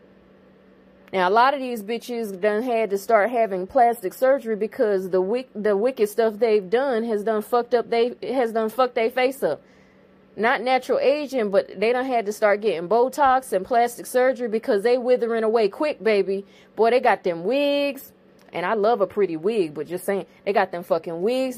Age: 30-49